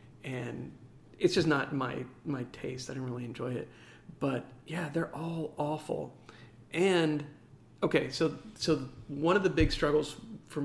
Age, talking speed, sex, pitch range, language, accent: 40-59, 160 wpm, male, 130-155 Hz, English, American